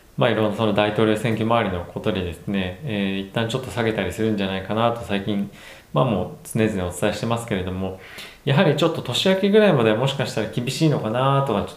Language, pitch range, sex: Japanese, 100-130 Hz, male